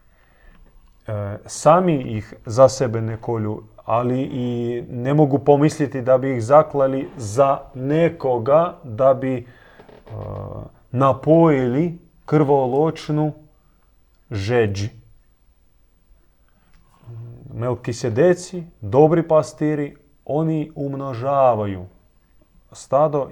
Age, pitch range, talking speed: 30-49, 105-135 Hz, 70 wpm